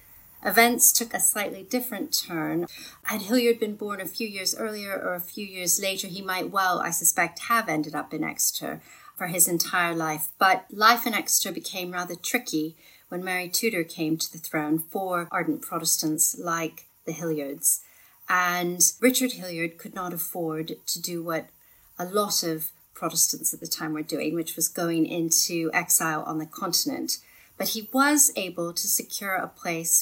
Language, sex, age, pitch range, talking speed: English, female, 40-59, 165-200 Hz, 175 wpm